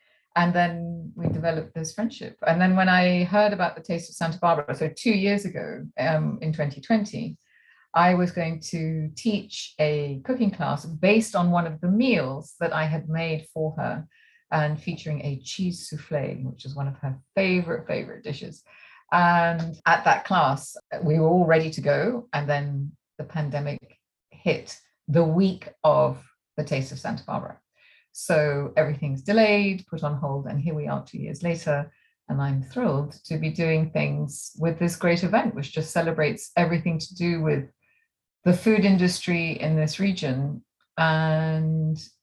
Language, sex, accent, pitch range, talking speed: English, female, British, 150-175 Hz, 170 wpm